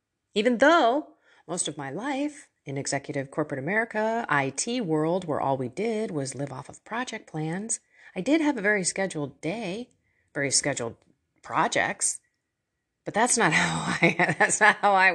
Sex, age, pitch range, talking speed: female, 40-59, 140-215 Hz, 160 wpm